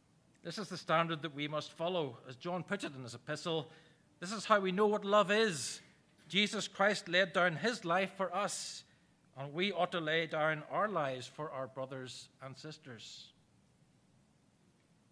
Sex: male